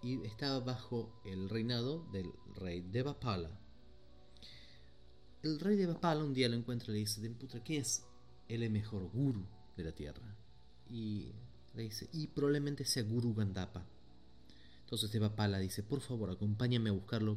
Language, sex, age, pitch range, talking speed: Spanish, male, 30-49, 90-120 Hz, 150 wpm